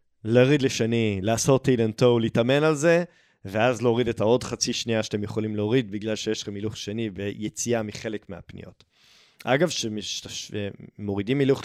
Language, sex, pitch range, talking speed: Hebrew, male, 105-130 Hz, 150 wpm